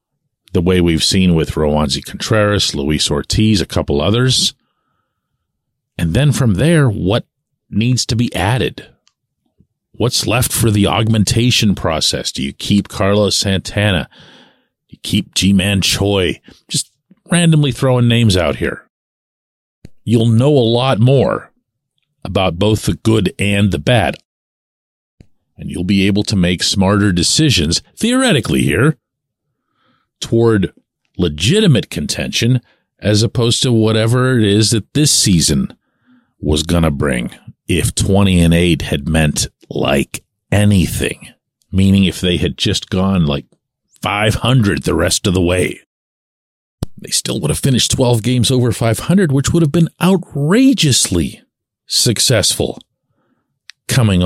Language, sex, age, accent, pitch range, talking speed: English, male, 40-59, American, 90-125 Hz, 130 wpm